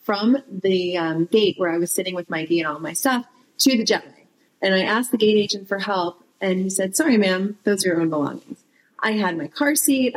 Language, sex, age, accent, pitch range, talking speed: English, female, 30-49, American, 175-250 Hz, 240 wpm